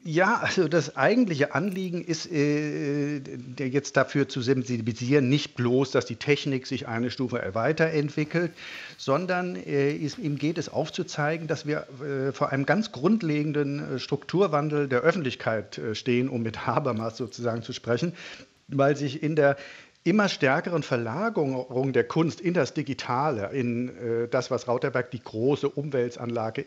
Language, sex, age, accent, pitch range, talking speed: German, male, 50-69, German, 120-155 Hz, 135 wpm